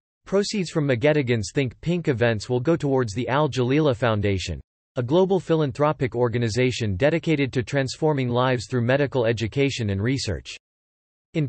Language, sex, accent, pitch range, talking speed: English, male, American, 115-150 Hz, 140 wpm